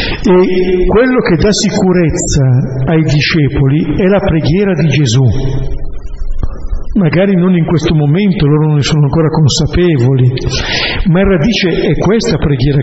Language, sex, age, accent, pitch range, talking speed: Italian, male, 60-79, native, 120-160 Hz, 135 wpm